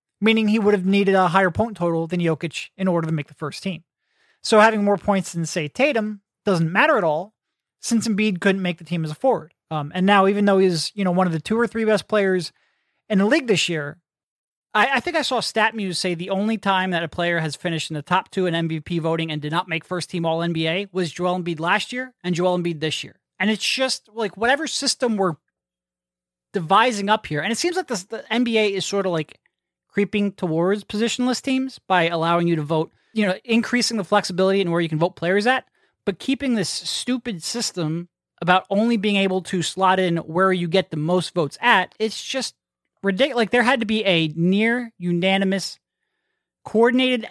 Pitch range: 170-220 Hz